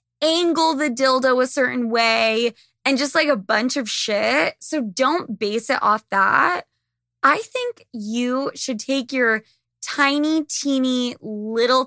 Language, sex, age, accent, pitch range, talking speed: English, female, 20-39, American, 210-270 Hz, 140 wpm